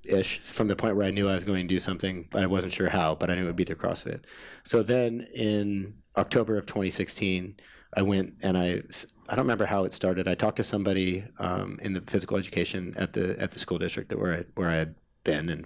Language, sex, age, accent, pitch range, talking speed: English, male, 30-49, American, 90-105 Hz, 250 wpm